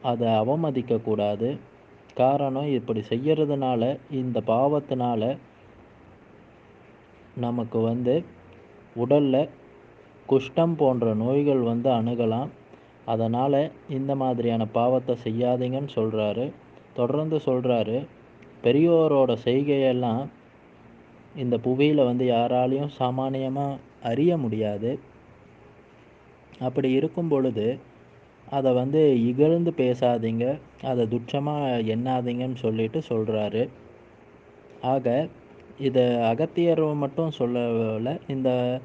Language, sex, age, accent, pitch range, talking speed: Tamil, male, 30-49, native, 115-140 Hz, 75 wpm